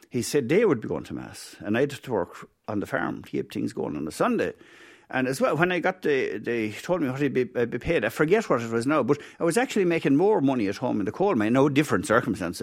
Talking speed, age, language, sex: 285 wpm, 60-79, English, male